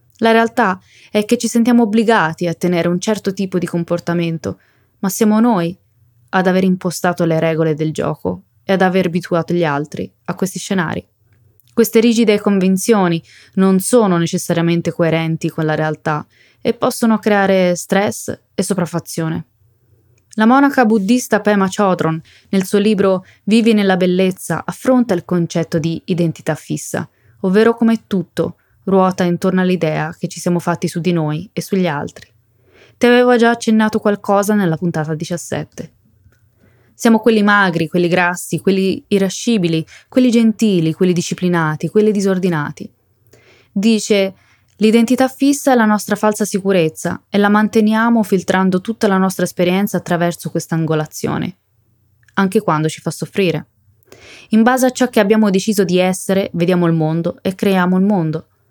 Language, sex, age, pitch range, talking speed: Italian, female, 20-39, 165-210 Hz, 145 wpm